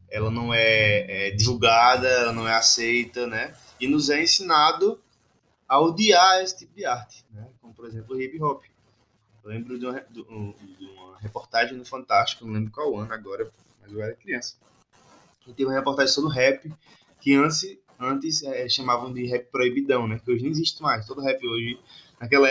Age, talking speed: 20-39, 190 wpm